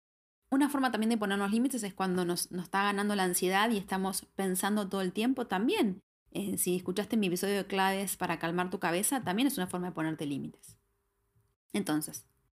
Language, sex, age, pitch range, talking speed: Spanish, female, 20-39, 180-230 Hz, 190 wpm